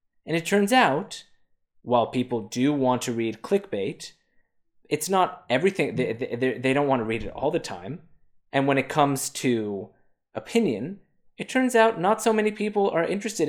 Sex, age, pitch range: male, 20-39, 120-185 Hz